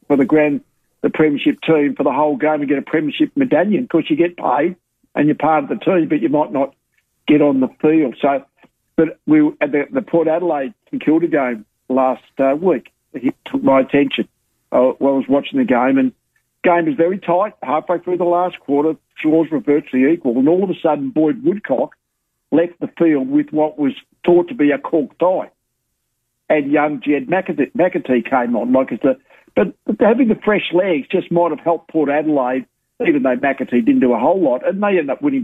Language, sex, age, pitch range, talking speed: English, male, 60-79, 145-200 Hz, 215 wpm